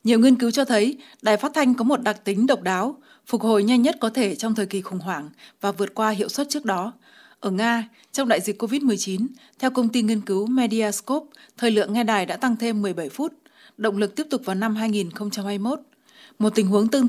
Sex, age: female, 20-39